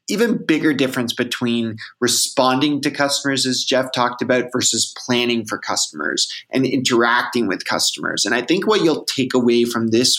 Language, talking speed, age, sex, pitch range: English, 165 wpm, 30-49, male, 115-140 Hz